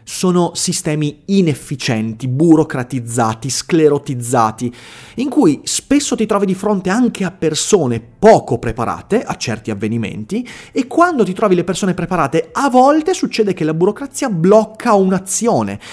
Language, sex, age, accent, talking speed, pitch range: Italian, male, 30-49, native, 130 wpm, 125-200 Hz